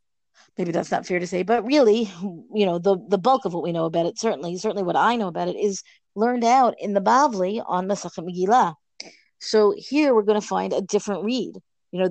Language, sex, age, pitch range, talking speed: English, female, 40-59, 185-220 Hz, 230 wpm